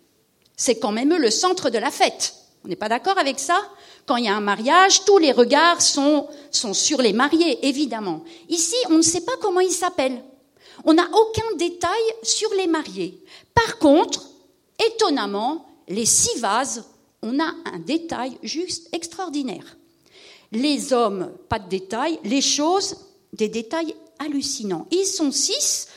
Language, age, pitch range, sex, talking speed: French, 50-69, 250-360 Hz, female, 160 wpm